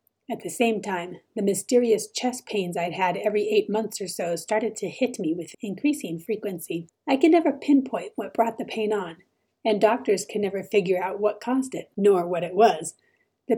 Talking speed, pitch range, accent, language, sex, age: 200 wpm, 195-235 Hz, American, English, female, 30-49